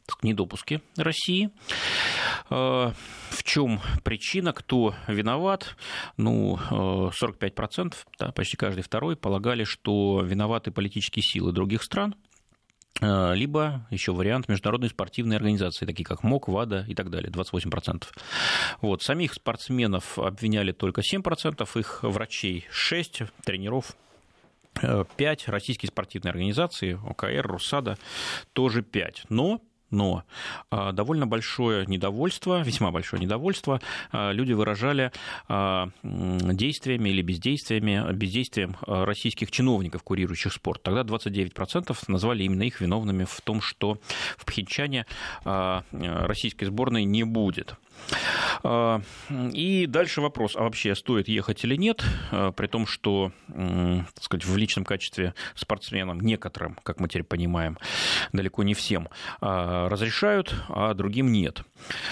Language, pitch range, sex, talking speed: Russian, 95-120 Hz, male, 110 wpm